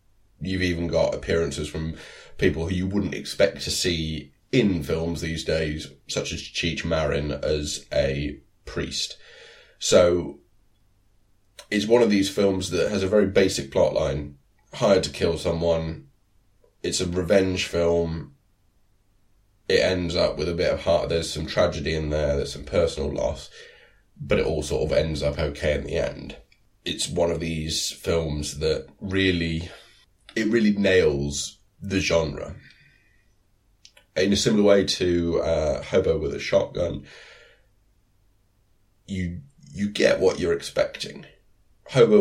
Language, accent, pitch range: English, British, 80-100 Hz